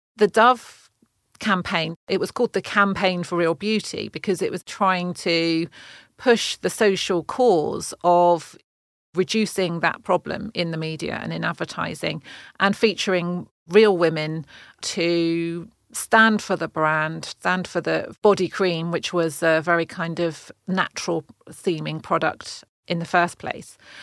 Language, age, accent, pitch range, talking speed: English, 40-59, British, 165-195 Hz, 140 wpm